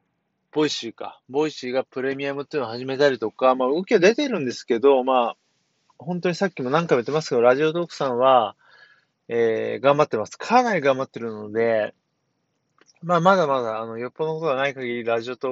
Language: Japanese